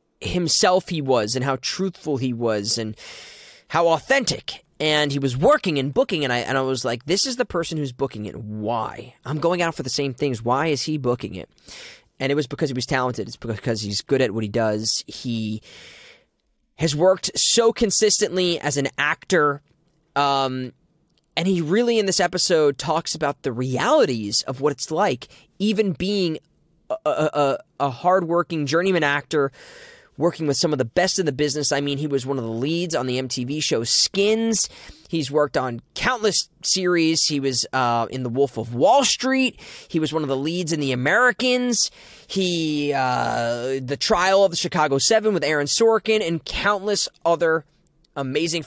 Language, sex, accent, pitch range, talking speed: English, male, American, 135-180 Hz, 185 wpm